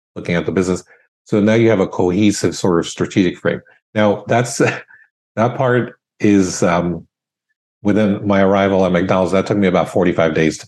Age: 50-69